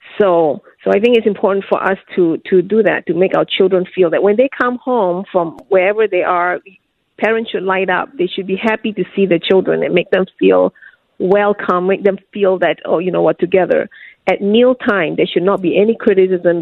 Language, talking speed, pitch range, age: English, 220 wpm, 180-220 Hz, 40-59